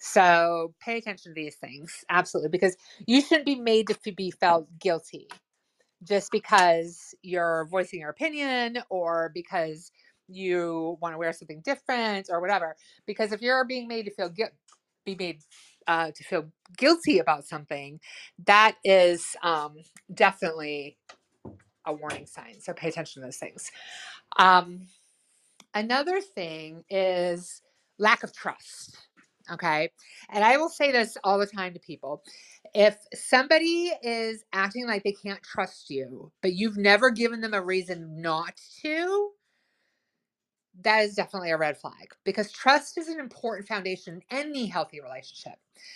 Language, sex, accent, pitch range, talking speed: English, female, American, 170-230 Hz, 145 wpm